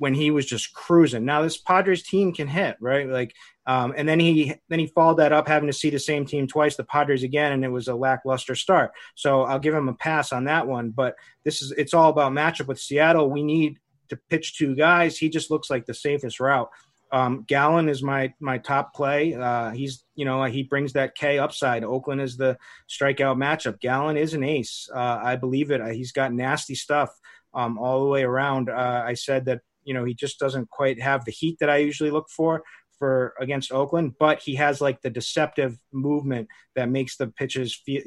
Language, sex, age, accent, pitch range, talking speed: English, male, 30-49, American, 130-155 Hz, 220 wpm